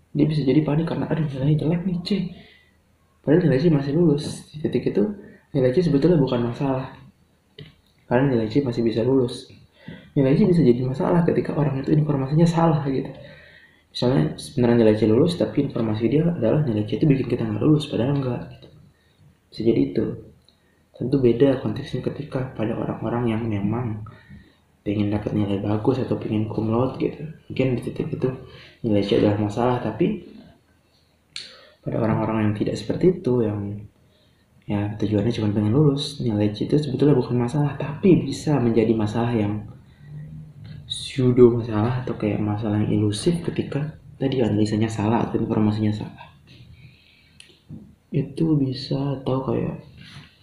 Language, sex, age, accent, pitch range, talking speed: Indonesian, male, 20-39, native, 110-150 Hz, 150 wpm